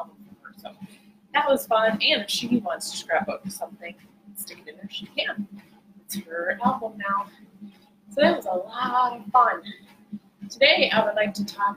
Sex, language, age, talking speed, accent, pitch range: female, English, 20-39, 165 wpm, American, 190-210 Hz